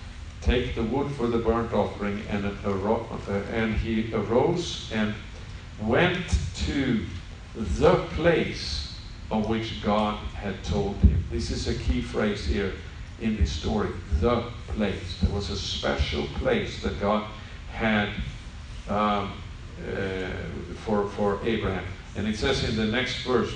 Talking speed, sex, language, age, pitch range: 140 wpm, male, English, 50-69, 90-110 Hz